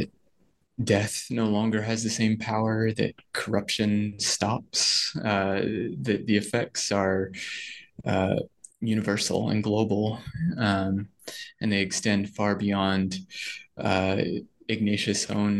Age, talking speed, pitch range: 20-39, 110 wpm, 100-115 Hz